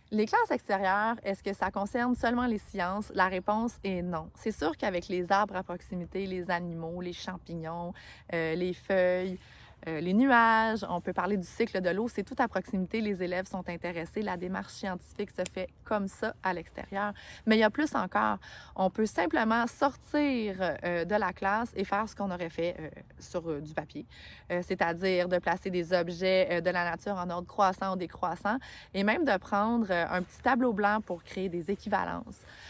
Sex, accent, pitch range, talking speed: female, Canadian, 180-220 Hz, 200 wpm